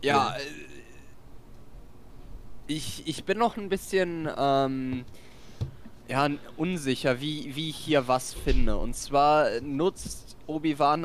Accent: German